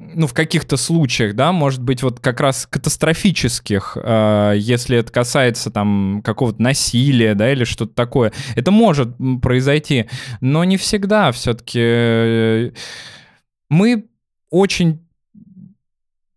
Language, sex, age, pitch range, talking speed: Russian, male, 20-39, 120-160 Hz, 110 wpm